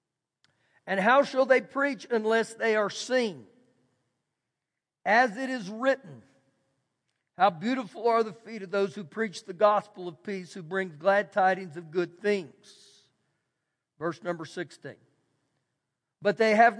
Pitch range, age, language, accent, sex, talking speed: 180-230 Hz, 50-69, English, American, male, 140 wpm